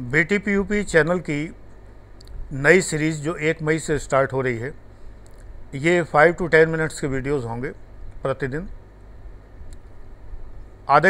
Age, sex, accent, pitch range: 50-69, male, native, 95-160 Hz